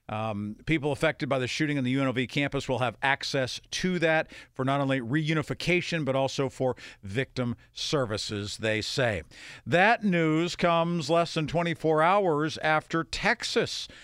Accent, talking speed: American, 150 wpm